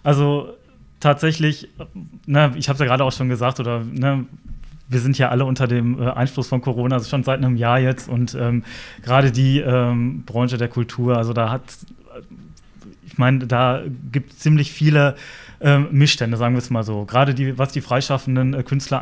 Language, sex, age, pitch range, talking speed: German, male, 30-49, 125-140 Hz, 190 wpm